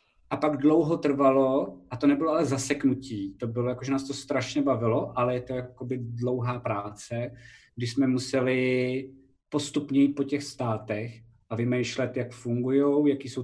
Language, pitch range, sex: Czech, 115-140 Hz, male